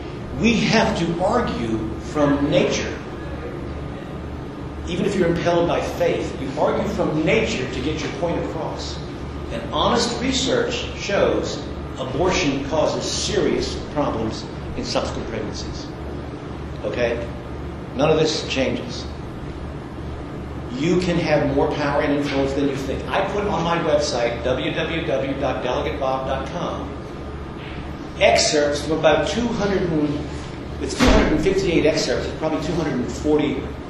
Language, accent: English, American